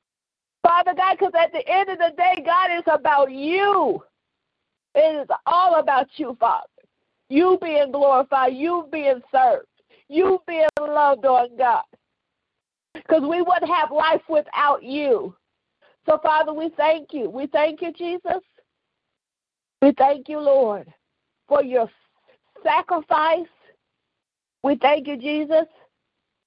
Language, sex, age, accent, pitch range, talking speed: English, female, 50-69, American, 280-335 Hz, 130 wpm